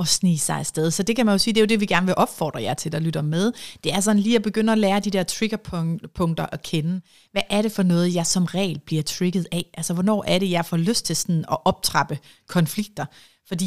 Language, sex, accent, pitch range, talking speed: Danish, female, native, 165-200 Hz, 265 wpm